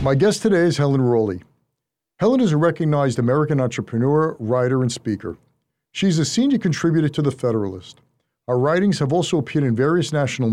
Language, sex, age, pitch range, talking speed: English, male, 50-69, 120-175 Hz, 170 wpm